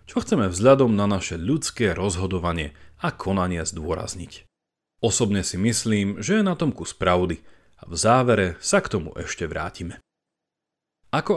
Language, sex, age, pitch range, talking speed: Slovak, male, 40-59, 90-135 Hz, 150 wpm